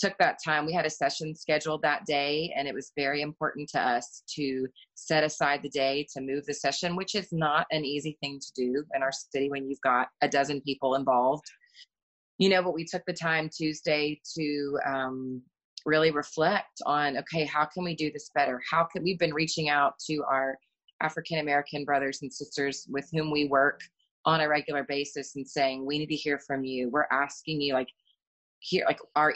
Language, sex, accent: English, female, American